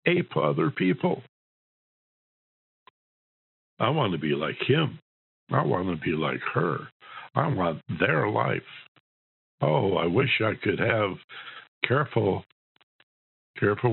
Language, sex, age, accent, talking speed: English, male, 60-79, American, 115 wpm